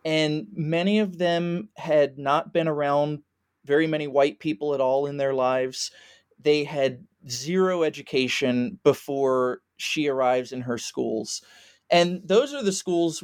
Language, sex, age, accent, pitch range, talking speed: English, male, 30-49, American, 135-170 Hz, 145 wpm